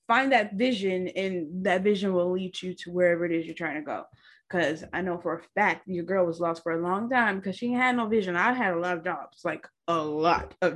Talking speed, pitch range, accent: 255 wpm, 185-240 Hz, American